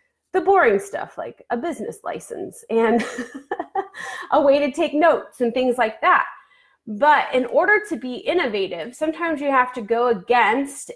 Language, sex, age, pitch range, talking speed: English, female, 30-49, 220-285 Hz, 160 wpm